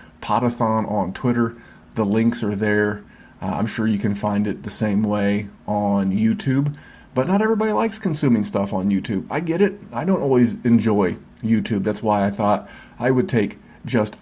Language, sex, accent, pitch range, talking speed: English, male, American, 105-125 Hz, 180 wpm